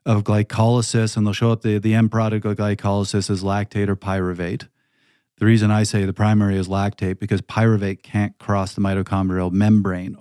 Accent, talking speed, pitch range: American, 180 wpm, 100-120 Hz